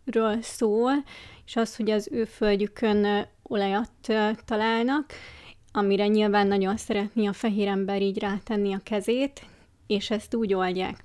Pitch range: 200-225 Hz